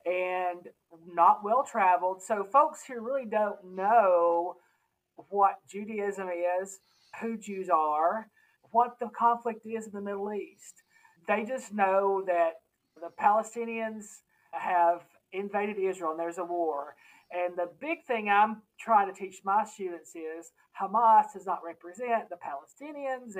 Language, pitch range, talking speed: English, 180-235 Hz, 135 wpm